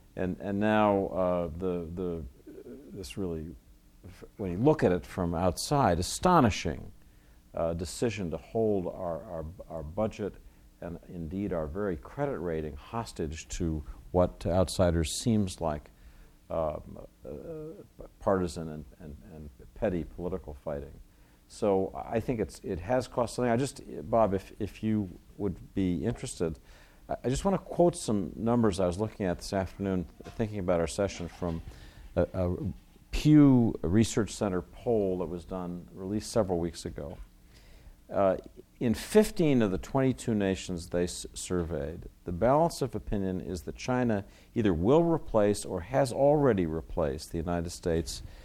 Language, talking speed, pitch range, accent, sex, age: English, 150 wpm, 80-110 Hz, American, male, 50-69